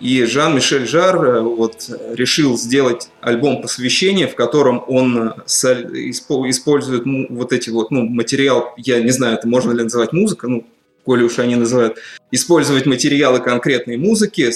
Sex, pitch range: male, 115-135 Hz